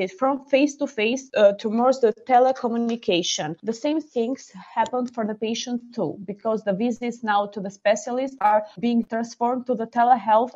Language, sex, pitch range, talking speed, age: Turkish, female, 200-250 Hz, 170 wpm, 20-39